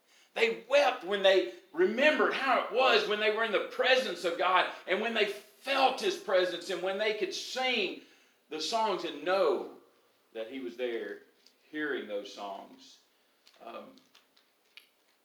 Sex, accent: male, American